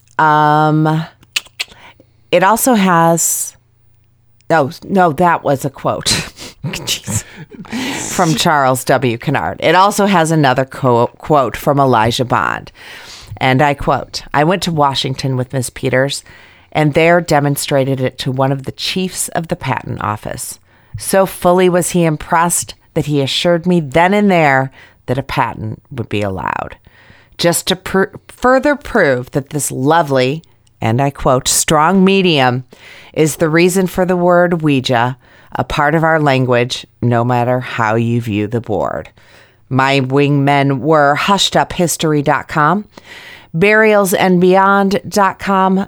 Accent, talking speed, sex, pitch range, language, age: American, 135 wpm, female, 130-180 Hz, English, 40-59